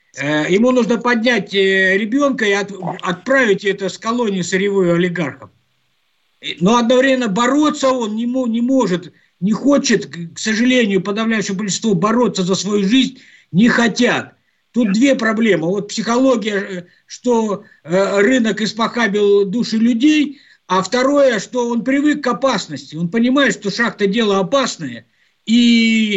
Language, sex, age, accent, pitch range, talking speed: Russian, male, 50-69, native, 195-240 Hz, 125 wpm